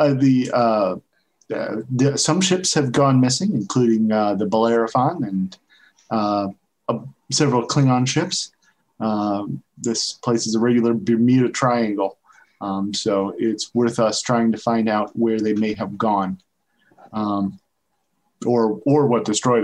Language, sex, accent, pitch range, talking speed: English, male, American, 110-135 Hz, 145 wpm